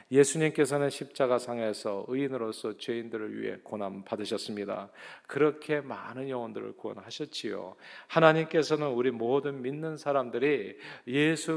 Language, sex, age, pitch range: Korean, male, 40-59, 110-140 Hz